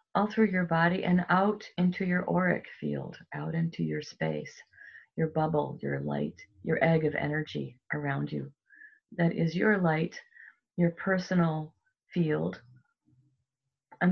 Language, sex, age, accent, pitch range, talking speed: English, female, 50-69, American, 145-190 Hz, 135 wpm